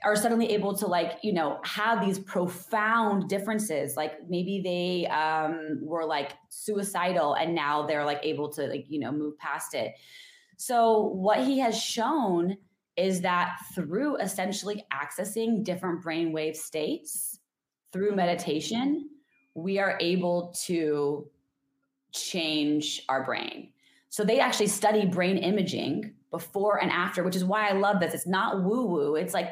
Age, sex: 20-39, female